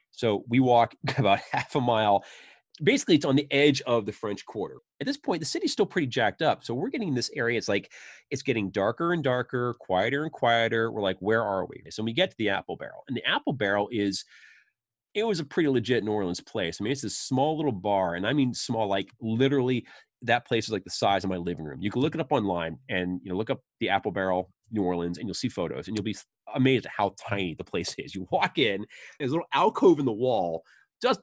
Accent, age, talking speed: American, 30-49, 250 wpm